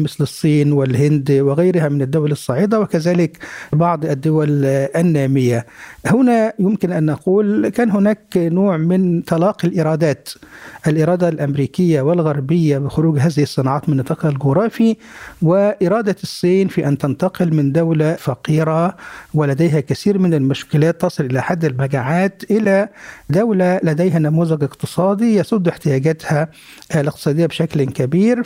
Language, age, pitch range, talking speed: Arabic, 60-79, 150-185 Hz, 120 wpm